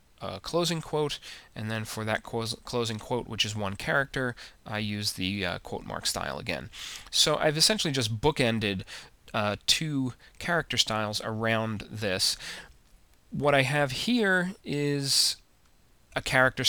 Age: 30-49